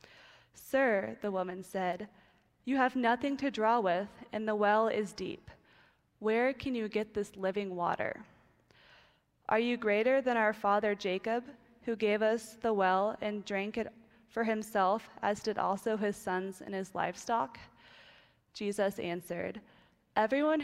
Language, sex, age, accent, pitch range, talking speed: English, female, 20-39, American, 195-230 Hz, 145 wpm